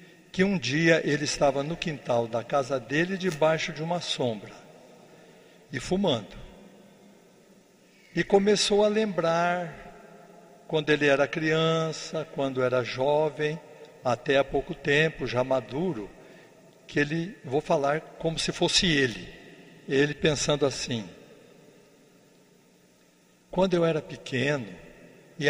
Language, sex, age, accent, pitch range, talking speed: Portuguese, male, 60-79, Brazilian, 145-195 Hz, 115 wpm